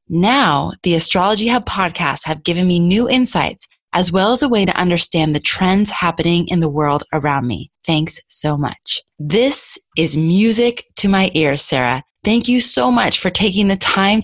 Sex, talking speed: female, 180 wpm